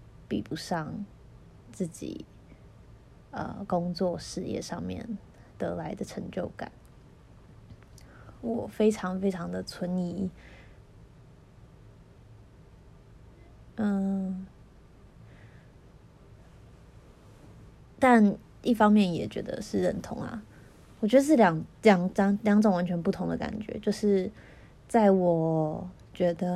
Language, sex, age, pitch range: Chinese, female, 20-39, 170-210 Hz